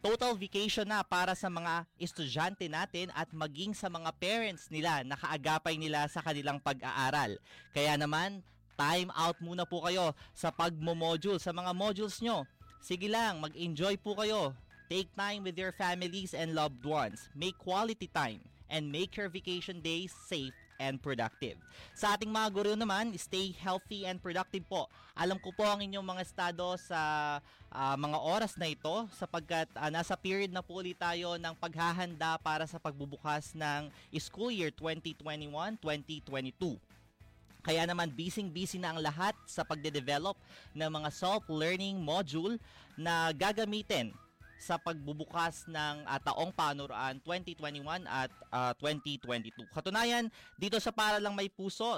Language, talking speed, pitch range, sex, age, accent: Filipino, 150 wpm, 150-190 Hz, male, 20-39, native